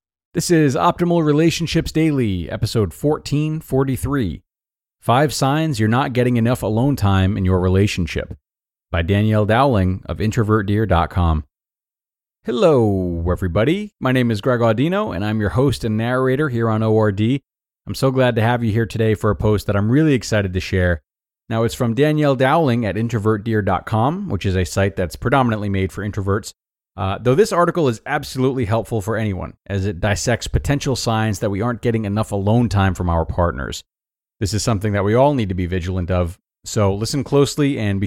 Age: 30-49